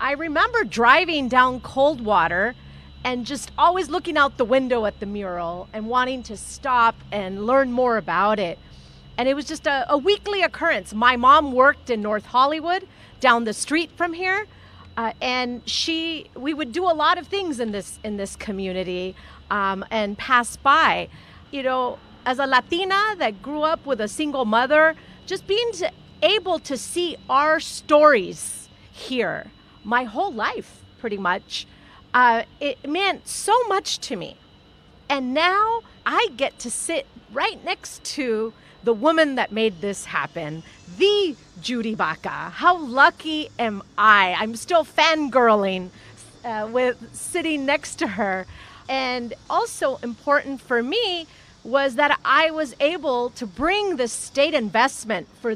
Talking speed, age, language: 155 wpm, 40-59, English